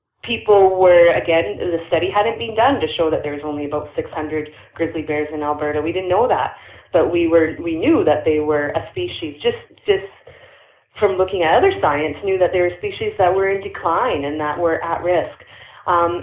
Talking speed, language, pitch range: 205 wpm, English, 170-250 Hz